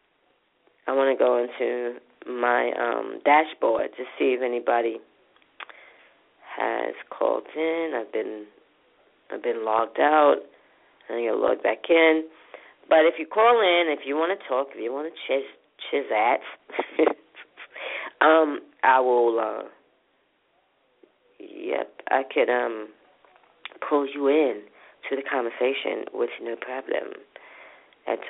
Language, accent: English, American